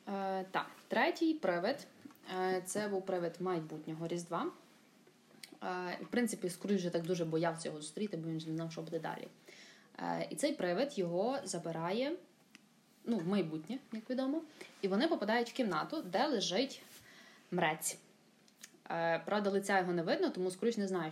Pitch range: 170-225 Hz